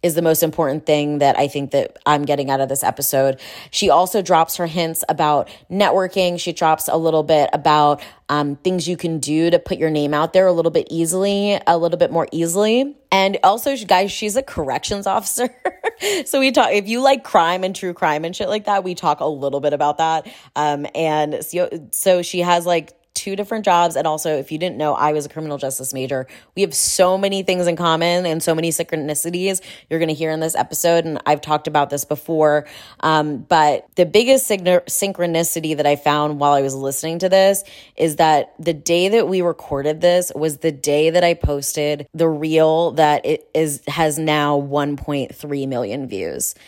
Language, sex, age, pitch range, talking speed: English, female, 20-39, 150-185 Hz, 205 wpm